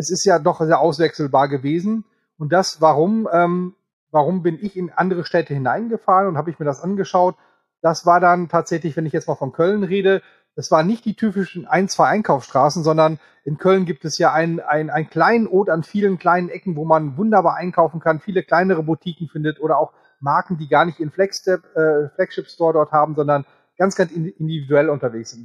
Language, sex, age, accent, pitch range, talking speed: German, male, 30-49, German, 150-185 Hz, 200 wpm